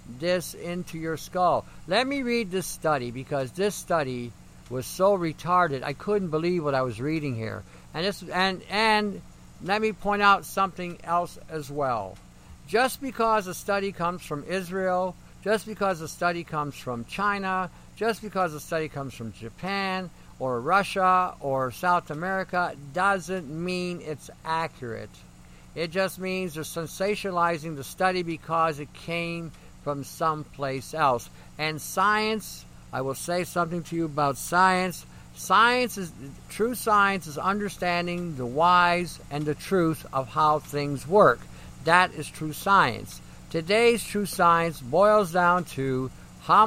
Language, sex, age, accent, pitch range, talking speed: English, male, 50-69, American, 145-190 Hz, 145 wpm